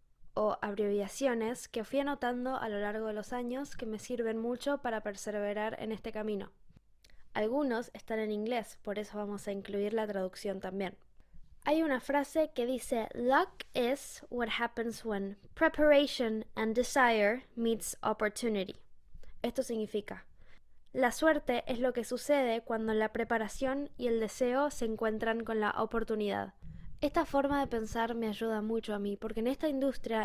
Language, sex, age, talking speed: English, female, 10-29, 155 wpm